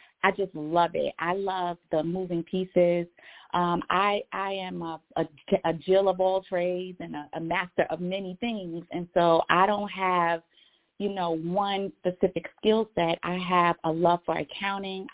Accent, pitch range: American, 170-195 Hz